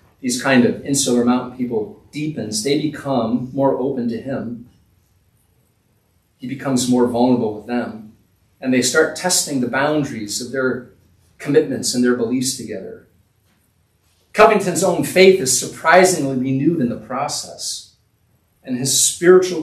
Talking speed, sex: 135 wpm, male